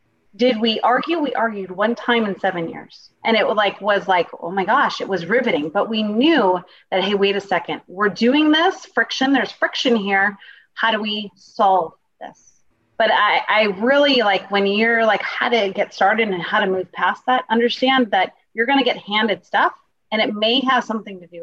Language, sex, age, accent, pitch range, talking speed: English, female, 30-49, American, 190-245 Hz, 205 wpm